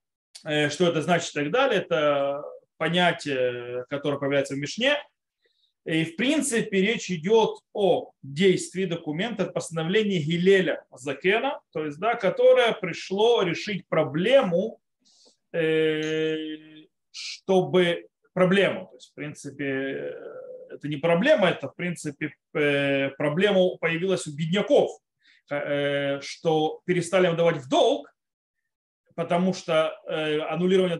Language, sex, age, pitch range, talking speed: Russian, male, 20-39, 155-205 Hz, 110 wpm